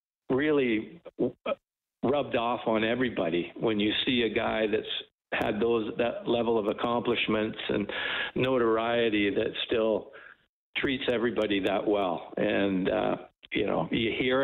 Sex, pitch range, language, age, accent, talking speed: male, 110-130 Hz, English, 60-79, American, 135 wpm